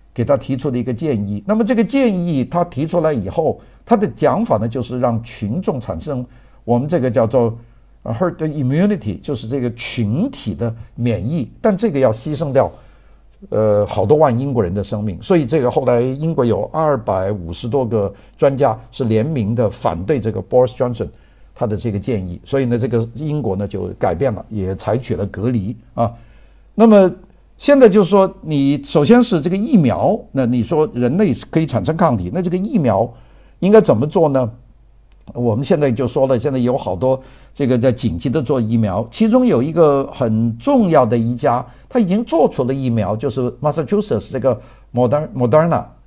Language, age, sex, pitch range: Chinese, 50-69, male, 115-155 Hz